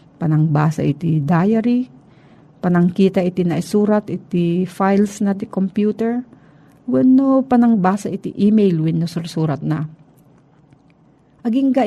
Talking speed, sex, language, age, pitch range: 95 wpm, female, Filipino, 50-69, 155-205 Hz